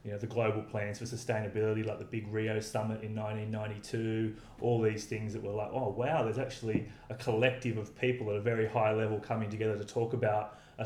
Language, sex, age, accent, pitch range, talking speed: English, male, 20-39, Australian, 110-120 Hz, 215 wpm